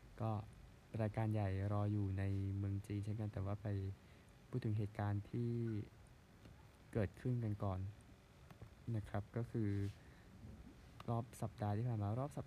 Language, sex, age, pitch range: Thai, male, 20-39, 100-110 Hz